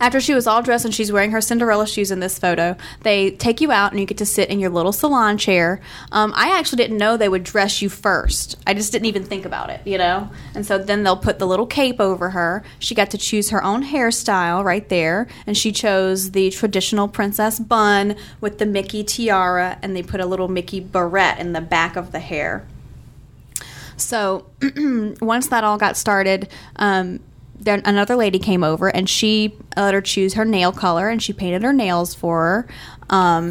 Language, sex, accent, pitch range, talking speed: English, female, American, 185-220 Hz, 210 wpm